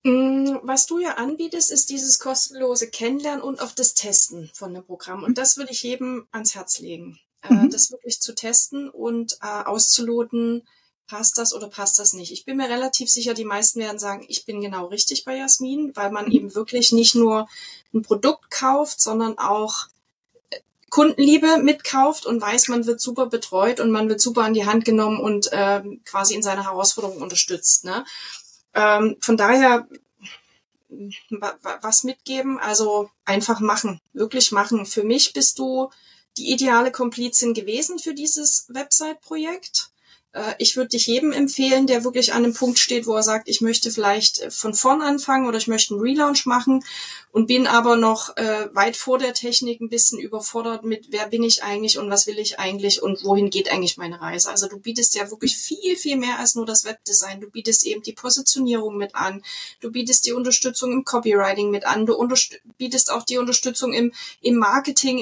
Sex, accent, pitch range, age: female, German, 210-260 Hz, 30-49